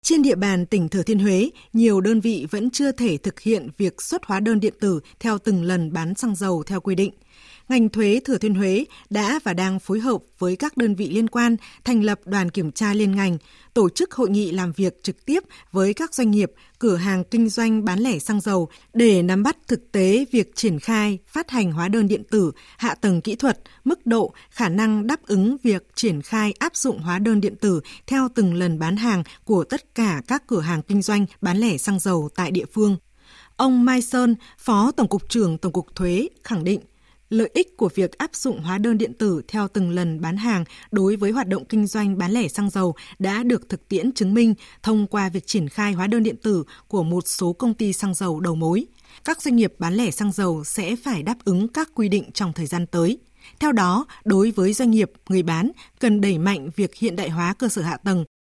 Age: 20-39